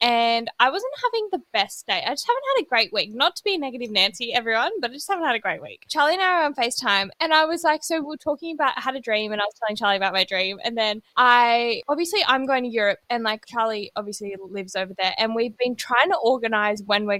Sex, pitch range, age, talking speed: female, 210-280 Hz, 20-39, 270 wpm